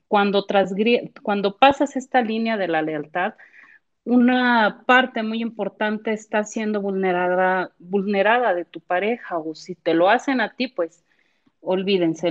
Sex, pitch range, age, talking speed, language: female, 185-245 Hz, 40-59, 135 wpm, Spanish